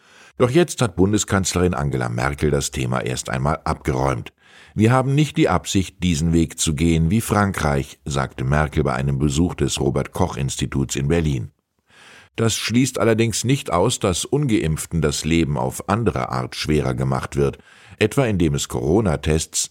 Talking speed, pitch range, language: 150 wpm, 70-100 Hz, German